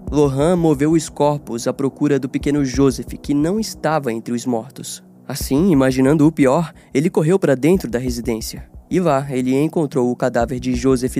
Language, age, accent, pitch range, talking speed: Portuguese, 20-39, Brazilian, 125-150 Hz, 175 wpm